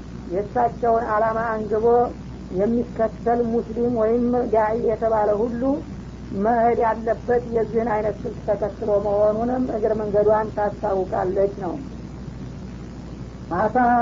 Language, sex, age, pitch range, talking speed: Amharic, female, 50-69, 210-230 Hz, 85 wpm